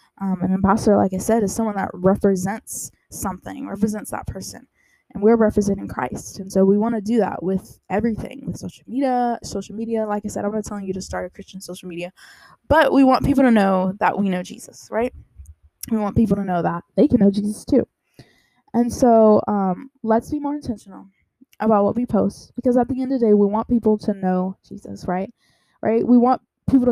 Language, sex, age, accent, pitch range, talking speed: English, female, 10-29, American, 190-235 Hz, 215 wpm